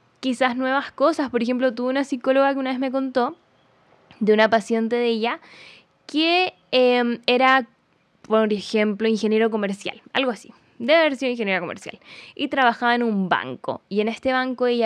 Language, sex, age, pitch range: Spanish, female, 10-29, 210-265 Hz